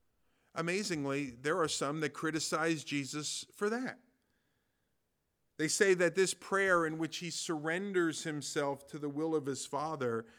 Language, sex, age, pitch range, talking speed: English, male, 50-69, 140-190 Hz, 145 wpm